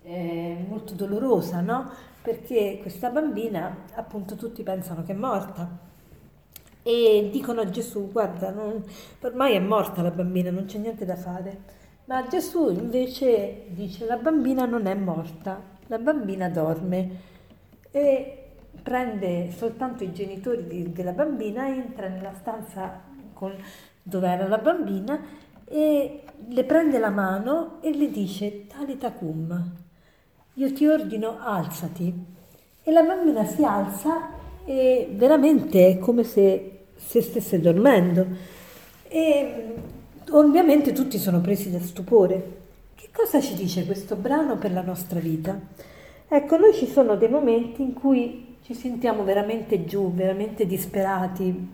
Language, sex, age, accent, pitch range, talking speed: Italian, female, 50-69, native, 190-255 Hz, 130 wpm